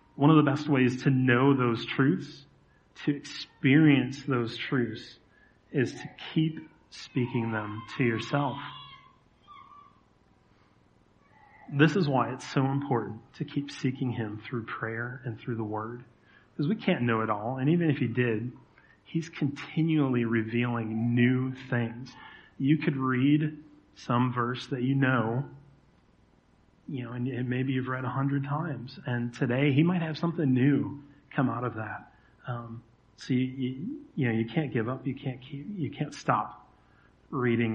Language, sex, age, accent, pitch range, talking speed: English, male, 30-49, American, 120-145 Hz, 155 wpm